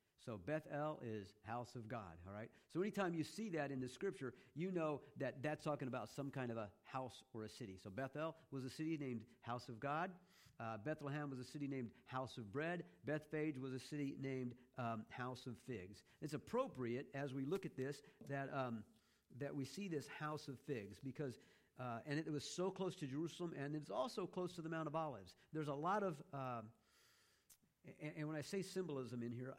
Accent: American